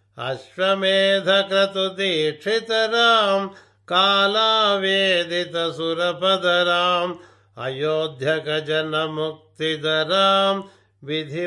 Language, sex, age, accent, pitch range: Telugu, male, 60-79, native, 155-195 Hz